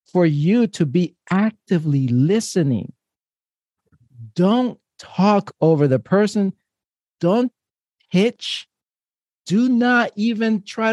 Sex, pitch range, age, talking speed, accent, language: male, 145-205 Hz, 50-69, 95 wpm, American, English